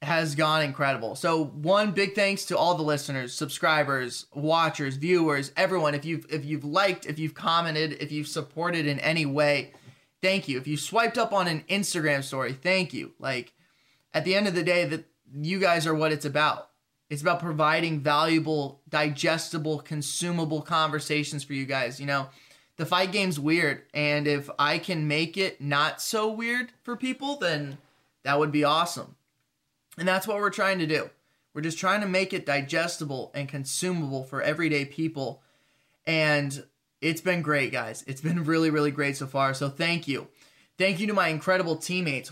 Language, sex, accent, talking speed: English, male, American, 180 wpm